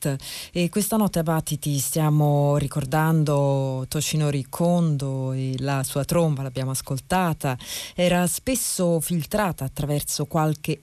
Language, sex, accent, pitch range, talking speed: Italian, female, native, 140-170 Hz, 110 wpm